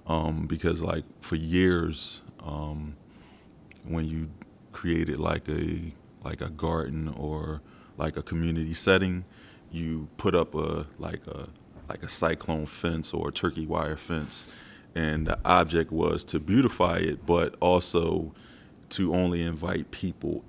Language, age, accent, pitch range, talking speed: English, 30-49, American, 80-90 Hz, 140 wpm